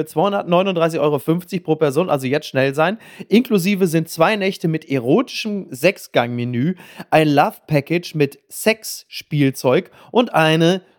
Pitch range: 145-190 Hz